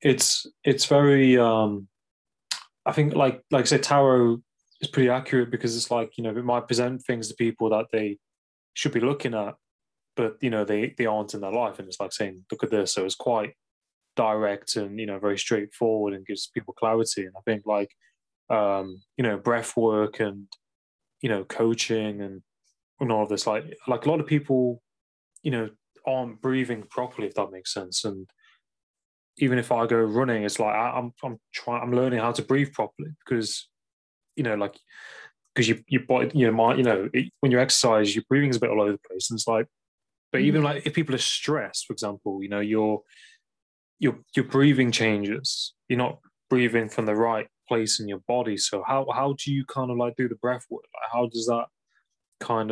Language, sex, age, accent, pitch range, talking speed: English, male, 20-39, British, 105-130 Hz, 205 wpm